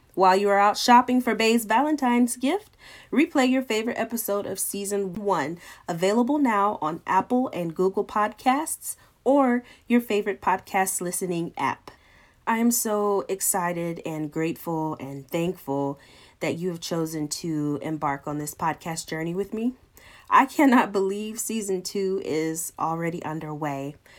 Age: 30-49